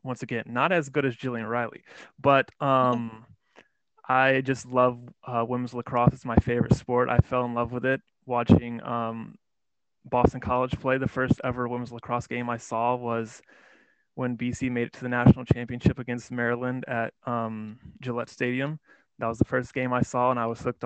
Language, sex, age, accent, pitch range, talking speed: English, male, 20-39, American, 120-130 Hz, 185 wpm